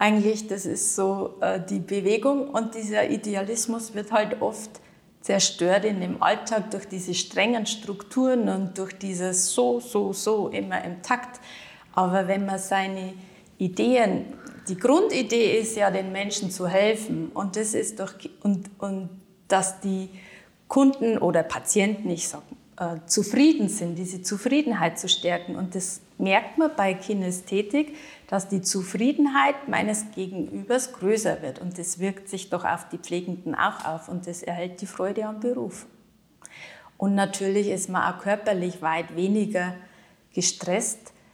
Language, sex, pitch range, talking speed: German, female, 180-220 Hz, 150 wpm